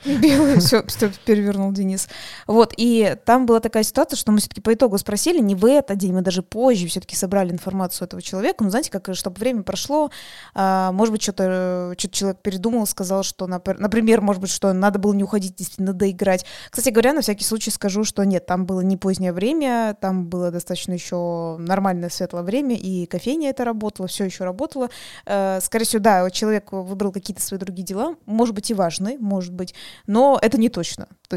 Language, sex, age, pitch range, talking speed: Russian, female, 20-39, 185-230 Hz, 190 wpm